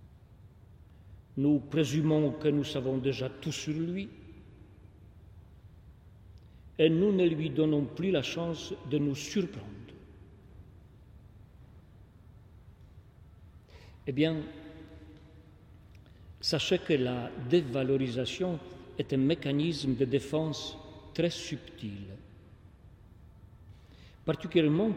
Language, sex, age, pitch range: French, male, 50-69, 100-150 Hz